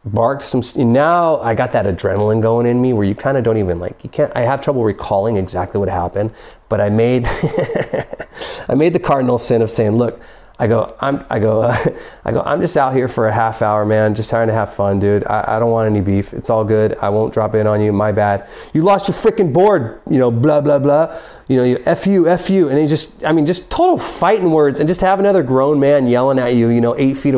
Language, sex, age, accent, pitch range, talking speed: English, male, 30-49, American, 115-185 Hz, 255 wpm